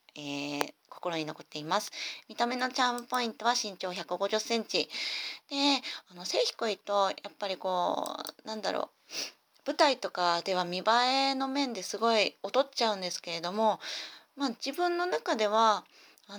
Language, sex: Japanese, female